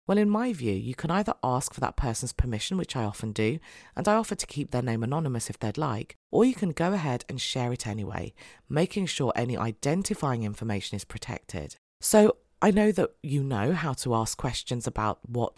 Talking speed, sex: 210 wpm, female